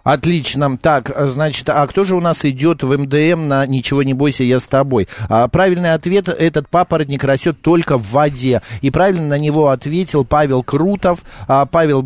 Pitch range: 130-160 Hz